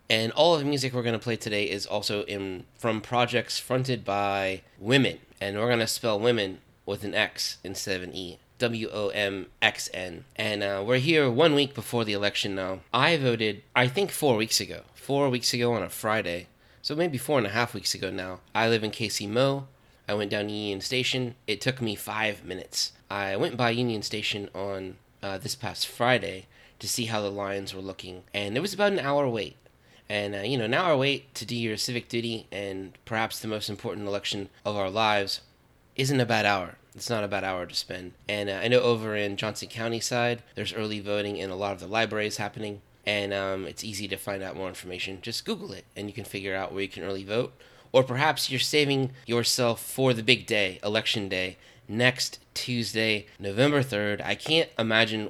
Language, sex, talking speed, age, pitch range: English, male, 210 wpm, 20-39, 100-125 Hz